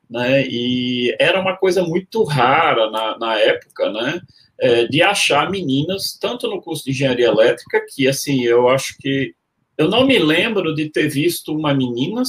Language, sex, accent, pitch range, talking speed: Portuguese, male, Brazilian, 125-180 Hz, 170 wpm